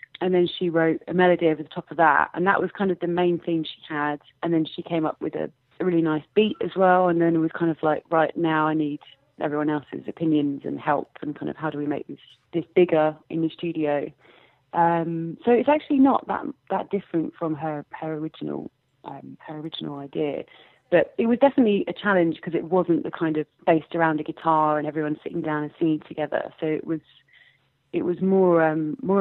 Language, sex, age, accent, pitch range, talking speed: English, female, 30-49, British, 150-175 Hz, 225 wpm